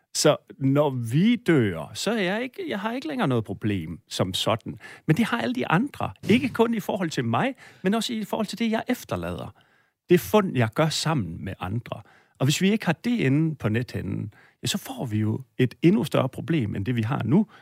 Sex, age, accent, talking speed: male, 40-59, native, 225 wpm